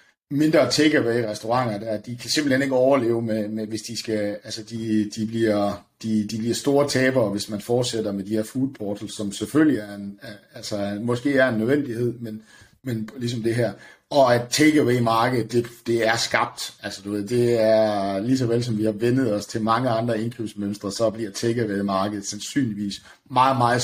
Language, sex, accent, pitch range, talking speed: Danish, male, native, 105-120 Hz, 185 wpm